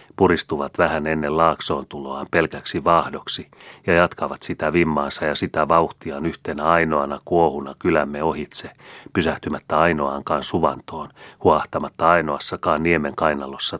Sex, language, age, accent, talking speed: male, Finnish, 30-49, native, 110 wpm